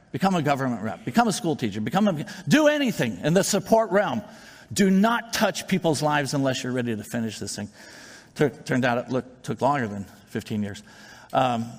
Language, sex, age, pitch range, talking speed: English, male, 50-69, 125-160 Hz, 185 wpm